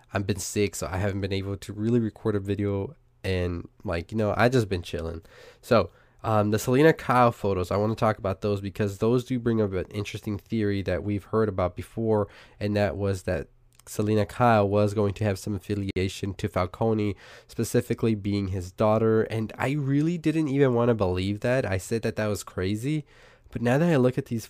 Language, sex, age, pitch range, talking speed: English, male, 20-39, 95-115 Hz, 210 wpm